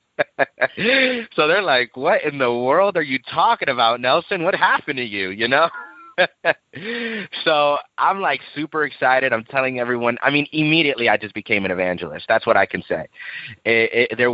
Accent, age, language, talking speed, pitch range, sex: American, 30-49, English, 165 wpm, 100-140 Hz, male